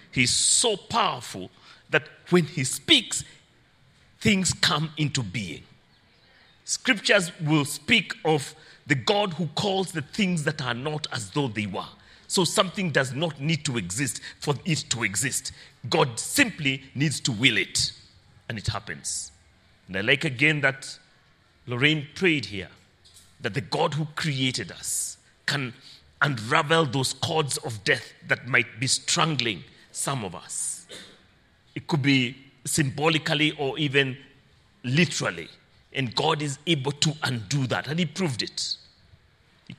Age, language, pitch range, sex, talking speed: 40-59, English, 120-160 Hz, male, 140 wpm